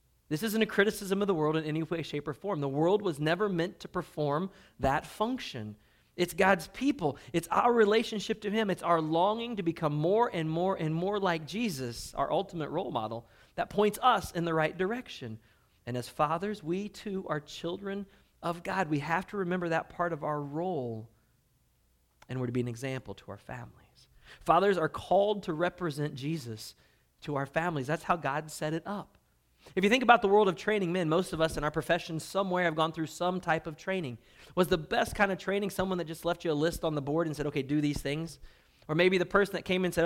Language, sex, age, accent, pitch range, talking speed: English, male, 40-59, American, 140-190 Hz, 225 wpm